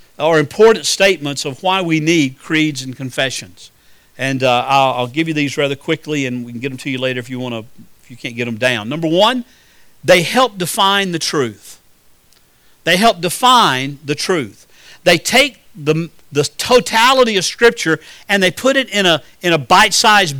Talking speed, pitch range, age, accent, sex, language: 190 wpm, 150-220 Hz, 50-69, American, male, English